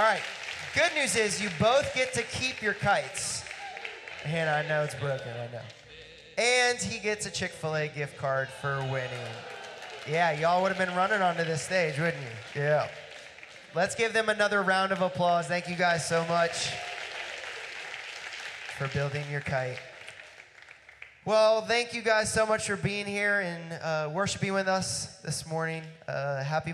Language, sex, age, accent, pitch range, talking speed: English, male, 20-39, American, 145-195 Hz, 165 wpm